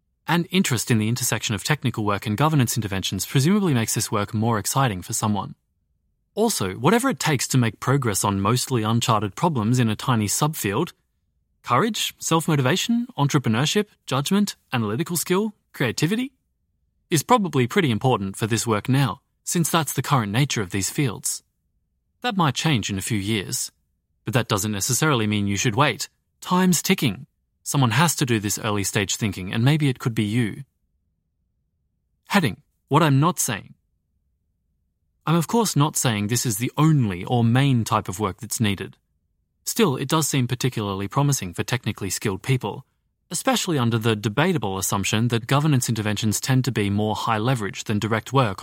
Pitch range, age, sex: 100-140 Hz, 30-49, male